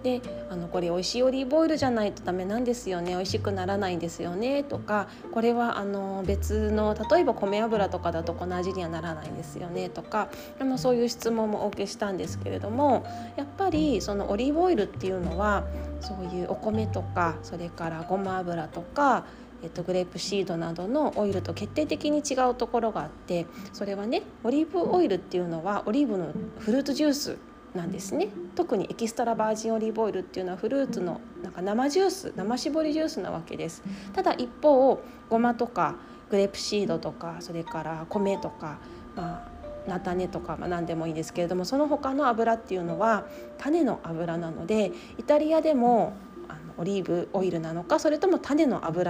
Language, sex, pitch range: Japanese, female, 175-245 Hz